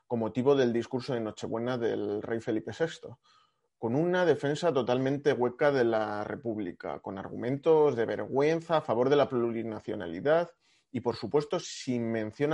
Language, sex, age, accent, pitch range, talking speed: Spanish, male, 30-49, Spanish, 115-160 Hz, 155 wpm